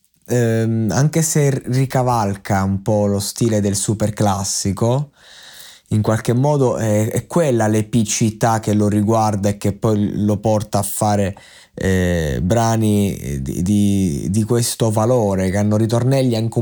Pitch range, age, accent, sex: 105-130 Hz, 20-39, native, male